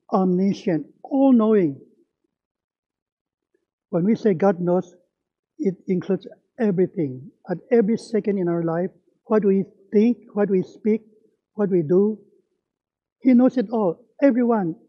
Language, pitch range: English, 170-230 Hz